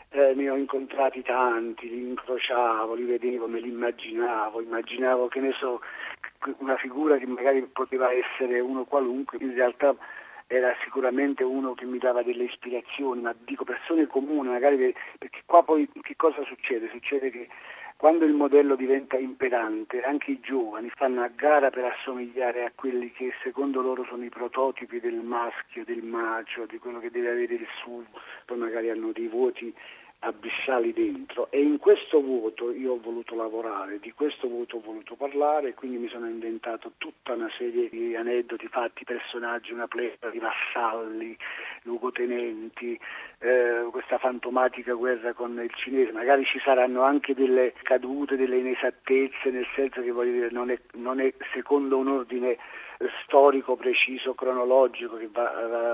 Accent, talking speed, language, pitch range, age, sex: native, 160 wpm, Italian, 120-140 Hz, 50-69, male